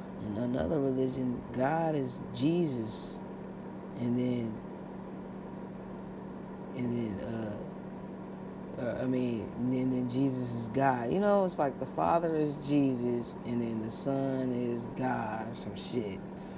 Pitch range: 120-150 Hz